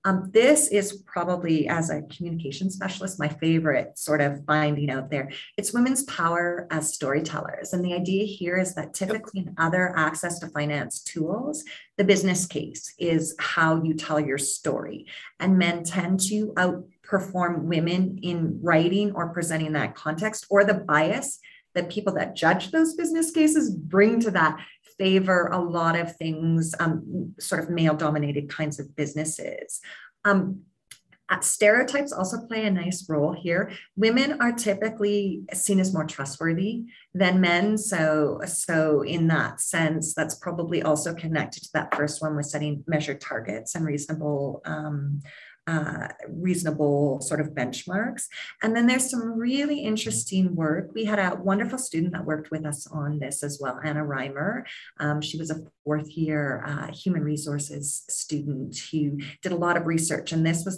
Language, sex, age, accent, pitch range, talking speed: English, female, 30-49, American, 150-195 Hz, 160 wpm